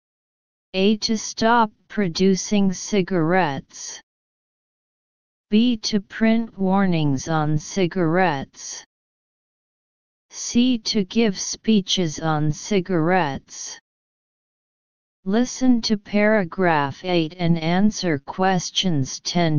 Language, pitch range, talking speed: English, 170-210 Hz, 75 wpm